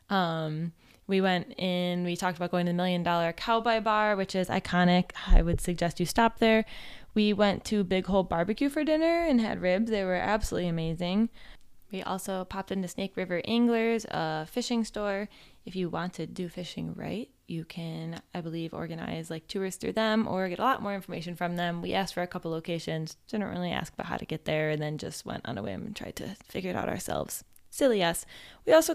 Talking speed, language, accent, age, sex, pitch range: 220 wpm, English, American, 20-39, female, 175-220 Hz